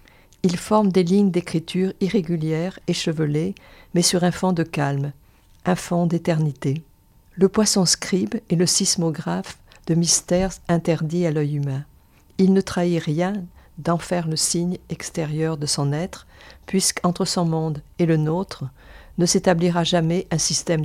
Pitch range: 150-180 Hz